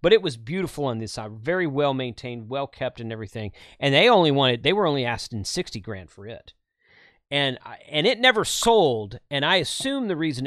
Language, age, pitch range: English, 30-49, 115-155 Hz